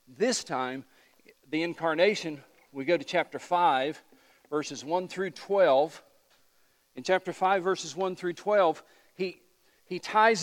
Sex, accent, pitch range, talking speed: male, American, 145-185 Hz, 130 wpm